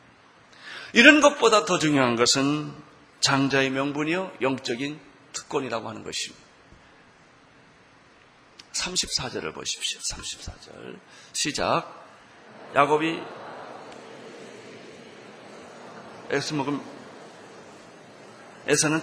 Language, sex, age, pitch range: Korean, male, 40-59, 145-225 Hz